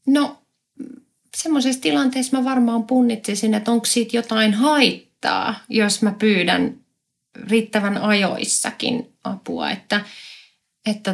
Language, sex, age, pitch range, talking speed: Finnish, female, 30-49, 190-240 Hz, 100 wpm